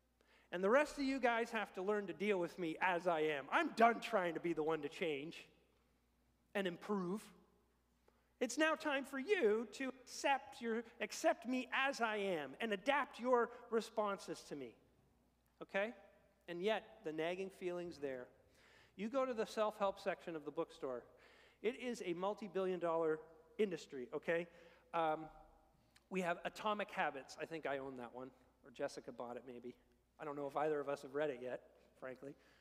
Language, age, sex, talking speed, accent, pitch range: English, 40-59, male, 180 wpm, American, 165-245 Hz